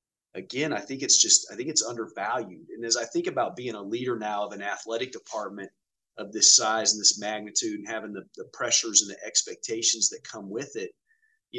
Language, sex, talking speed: English, male, 210 wpm